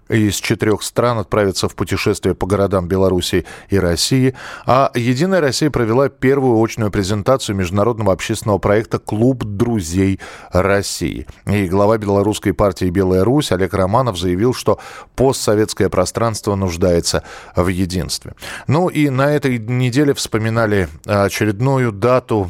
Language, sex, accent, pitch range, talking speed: Russian, male, native, 95-120 Hz, 125 wpm